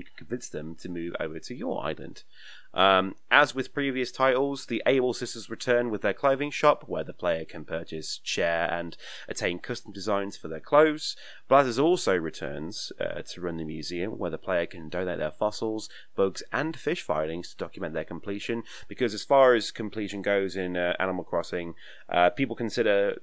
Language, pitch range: English, 90-120 Hz